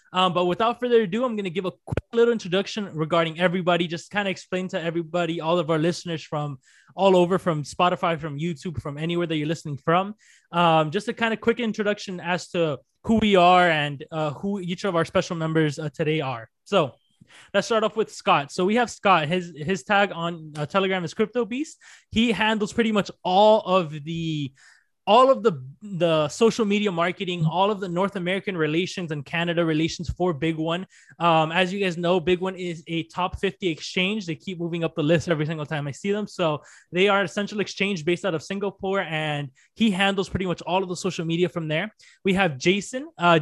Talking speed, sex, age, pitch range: 215 wpm, male, 20-39, 165-200 Hz